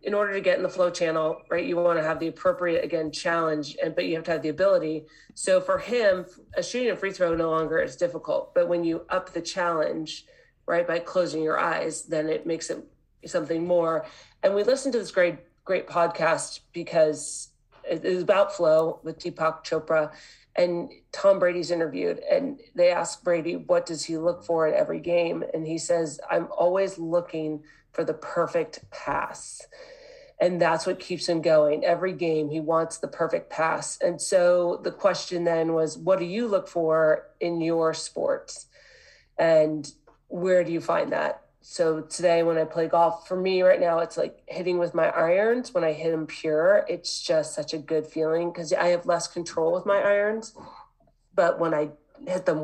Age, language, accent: 40-59, English, American